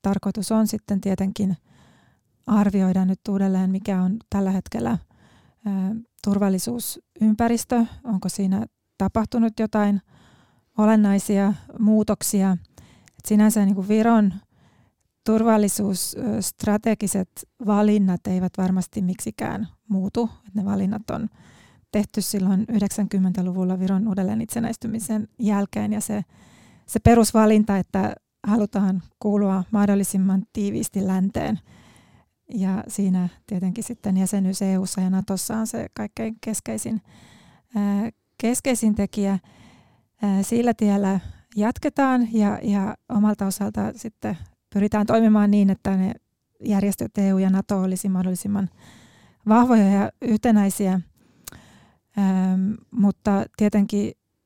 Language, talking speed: Finnish, 95 wpm